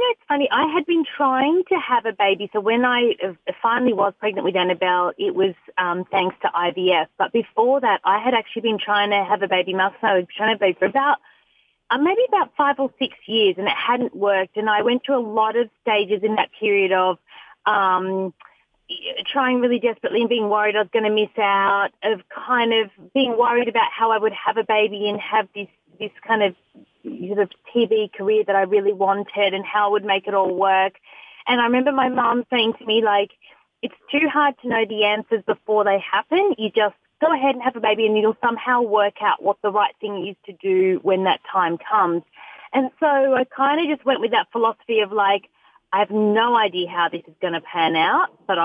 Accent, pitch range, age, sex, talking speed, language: Australian, 200-250 Hz, 30-49, female, 220 wpm, English